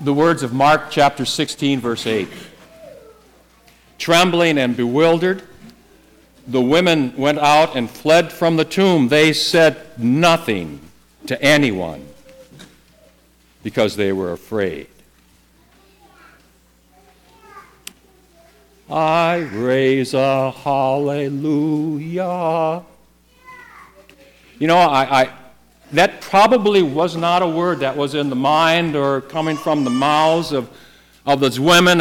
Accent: American